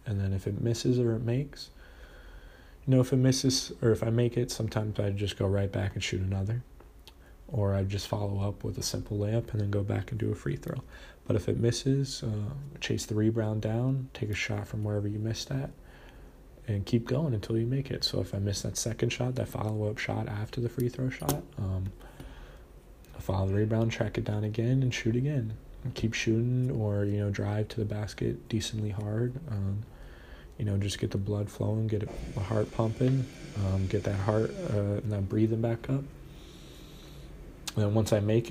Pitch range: 100-120 Hz